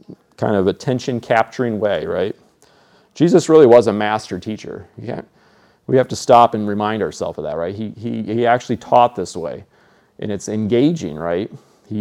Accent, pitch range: American, 105-125 Hz